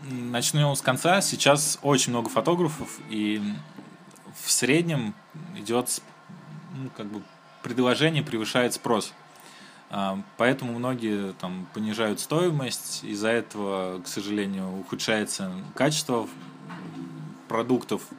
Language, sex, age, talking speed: Russian, male, 20-39, 95 wpm